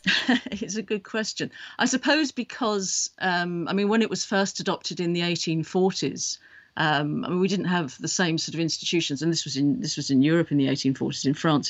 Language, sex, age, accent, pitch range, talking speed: English, female, 50-69, British, 155-195 Hz, 215 wpm